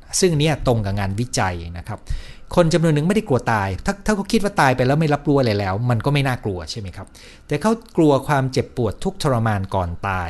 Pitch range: 95-145 Hz